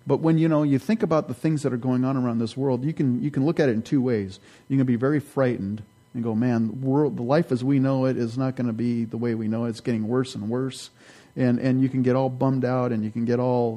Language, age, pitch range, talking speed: English, 40-59, 115-135 Hz, 305 wpm